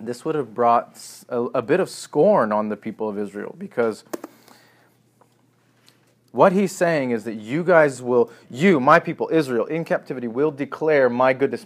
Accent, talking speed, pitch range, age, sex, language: American, 170 wpm, 115-150 Hz, 30-49, male, English